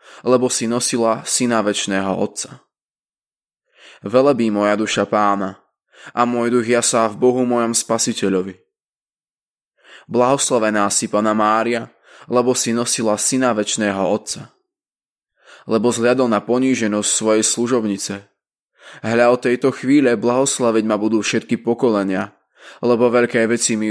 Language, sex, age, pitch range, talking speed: Slovak, male, 20-39, 105-125 Hz, 120 wpm